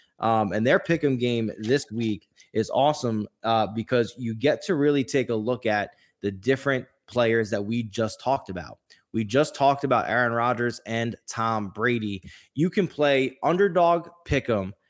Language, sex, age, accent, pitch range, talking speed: English, male, 20-39, American, 110-140 Hz, 165 wpm